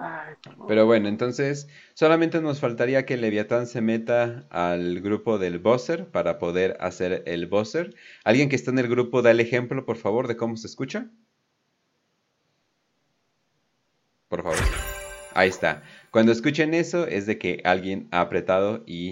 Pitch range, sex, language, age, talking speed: 90-140 Hz, male, Spanish, 30-49, 150 wpm